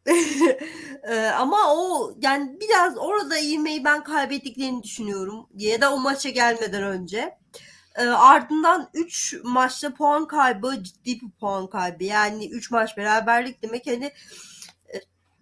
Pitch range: 225-295 Hz